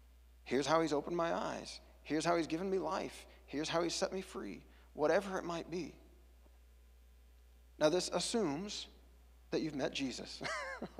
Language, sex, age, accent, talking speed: English, male, 40-59, American, 160 wpm